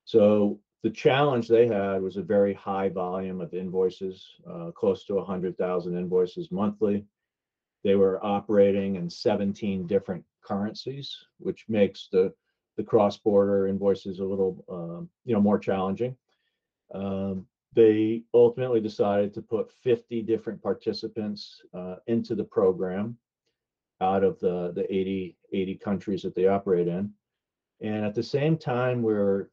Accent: American